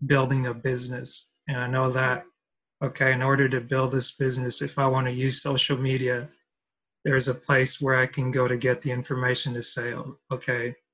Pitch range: 125-140 Hz